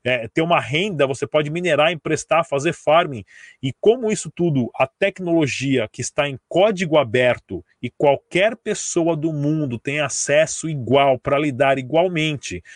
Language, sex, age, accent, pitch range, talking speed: Portuguese, male, 30-49, Brazilian, 140-190 Hz, 145 wpm